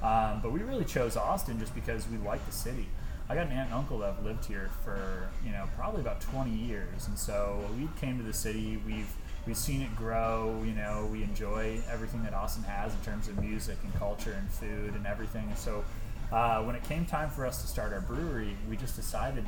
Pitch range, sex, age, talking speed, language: 100-115 Hz, male, 20-39, 230 wpm, English